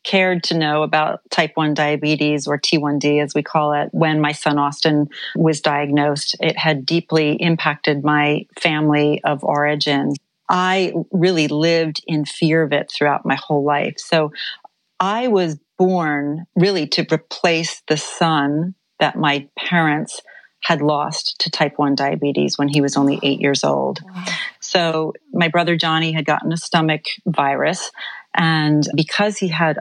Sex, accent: female, American